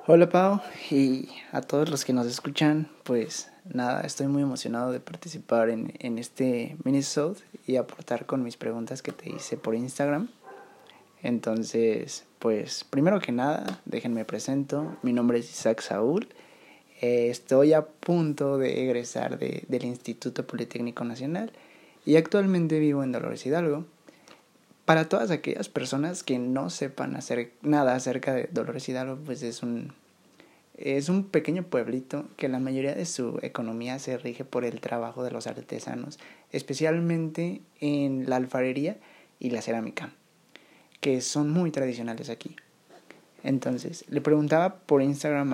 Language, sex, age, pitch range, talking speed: Spanish, male, 20-39, 120-150 Hz, 140 wpm